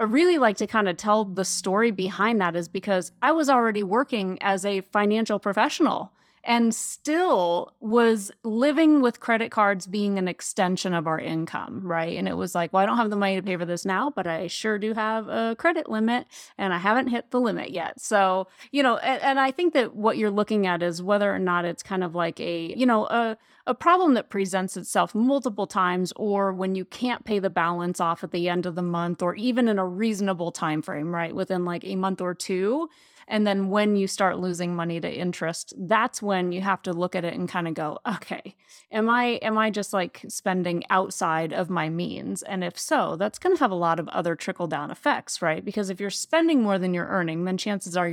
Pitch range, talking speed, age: 180-225 Hz, 230 wpm, 30-49